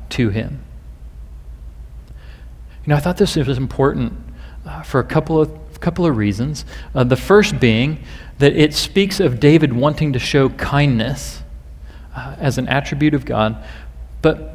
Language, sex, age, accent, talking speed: English, male, 40-59, American, 155 wpm